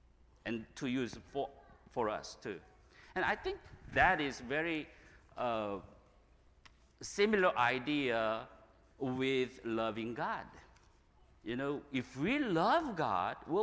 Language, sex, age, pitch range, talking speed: English, male, 50-69, 120-200 Hz, 115 wpm